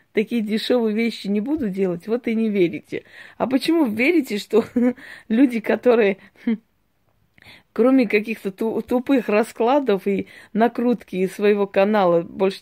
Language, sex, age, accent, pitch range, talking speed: Russian, female, 20-39, native, 200-245 Hz, 120 wpm